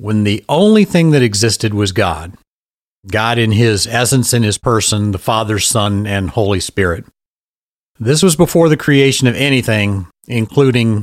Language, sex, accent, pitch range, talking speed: English, male, American, 100-130 Hz, 160 wpm